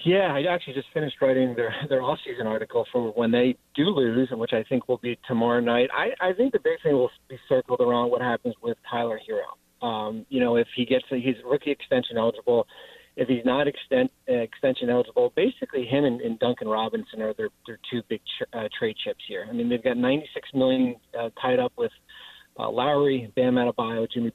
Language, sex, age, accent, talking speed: English, male, 40-59, American, 215 wpm